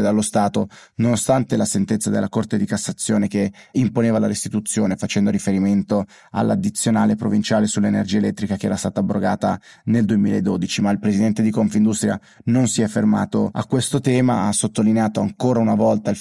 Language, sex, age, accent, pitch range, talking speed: Italian, male, 30-49, native, 100-110 Hz, 160 wpm